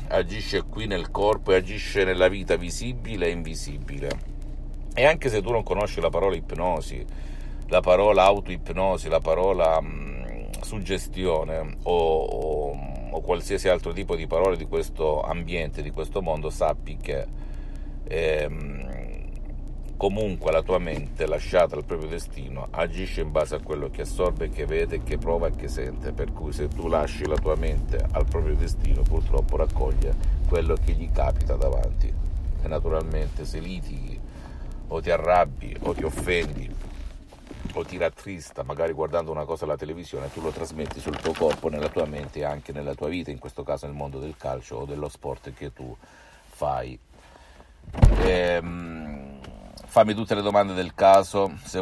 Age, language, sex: 50-69, Italian, male